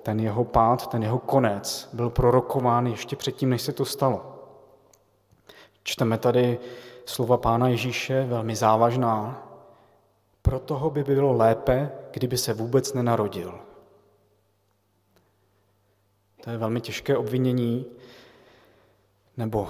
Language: Slovak